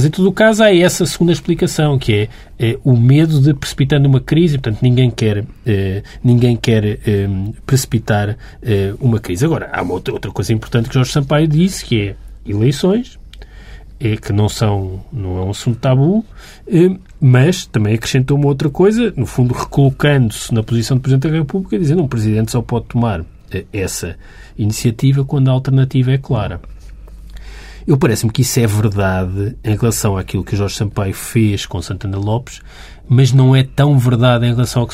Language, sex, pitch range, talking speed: Portuguese, male, 105-140 Hz, 185 wpm